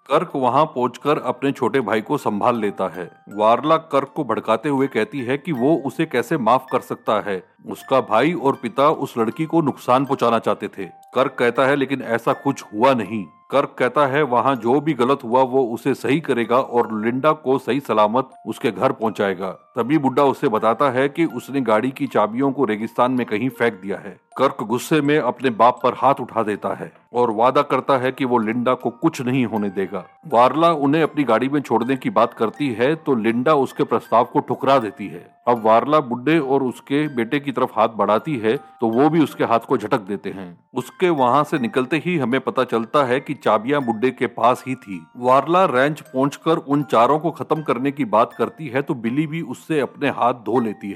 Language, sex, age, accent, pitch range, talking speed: Hindi, male, 40-59, native, 115-145 Hz, 210 wpm